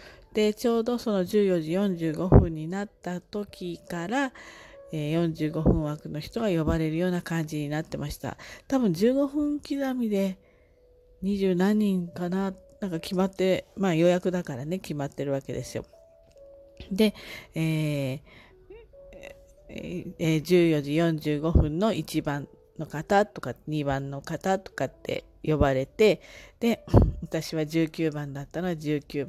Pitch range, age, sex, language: 155-215 Hz, 40-59, female, Japanese